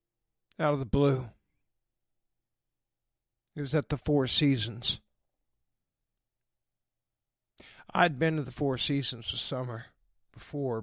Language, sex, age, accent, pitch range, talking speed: English, male, 50-69, American, 125-190 Hz, 105 wpm